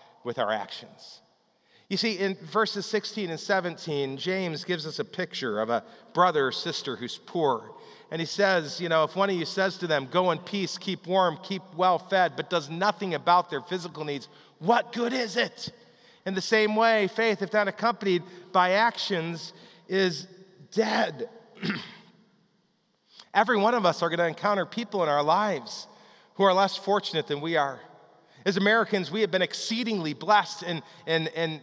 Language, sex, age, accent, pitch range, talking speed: English, male, 40-59, American, 165-210 Hz, 180 wpm